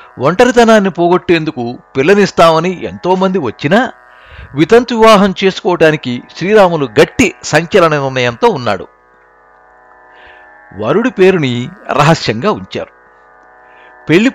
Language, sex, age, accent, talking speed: Telugu, male, 60-79, native, 80 wpm